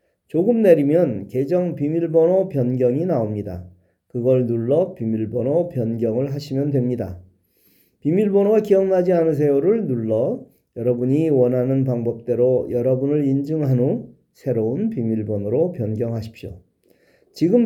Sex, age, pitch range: male, 40-59, 120-180 Hz